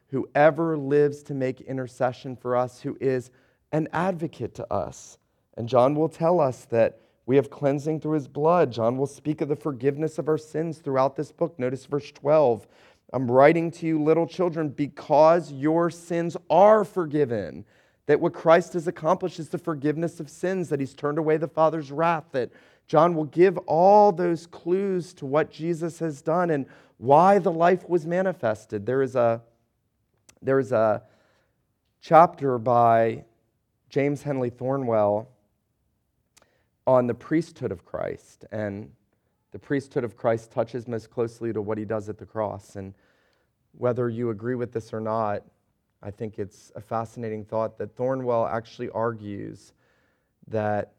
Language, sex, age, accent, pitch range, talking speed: English, male, 40-59, American, 115-160 Hz, 160 wpm